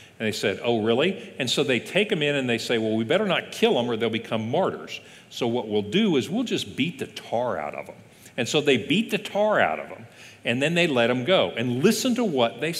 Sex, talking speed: male, 265 wpm